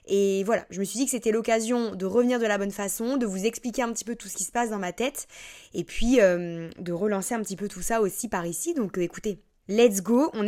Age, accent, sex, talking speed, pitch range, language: 20-39, French, female, 270 wpm, 200-245 Hz, French